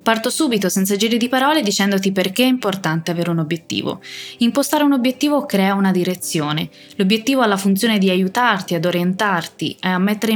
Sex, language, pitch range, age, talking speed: female, Italian, 175-235 Hz, 20-39, 170 wpm